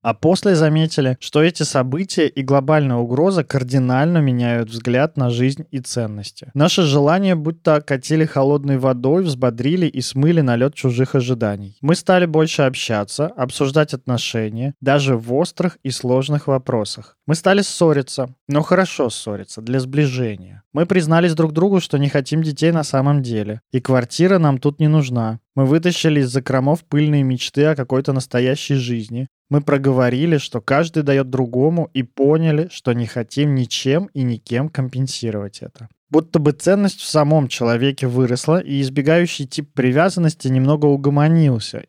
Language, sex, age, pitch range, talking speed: Russian, male, 20-39, 125-155 Hz, 150 wpm